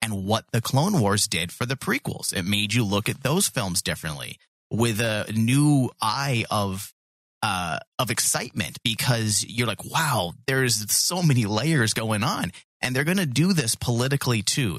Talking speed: 175 wpm